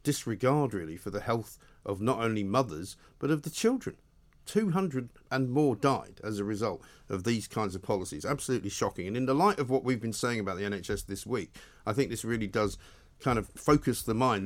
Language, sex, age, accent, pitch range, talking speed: English, male, 50-69, British, 105-140 Hz, 210 wpm